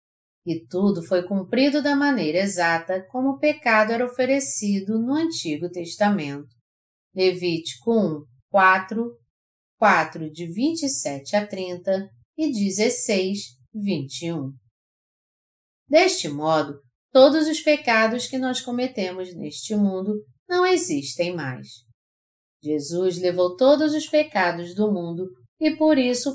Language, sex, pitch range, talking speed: Portuguese, female, 160-260 Hz, 110 wpm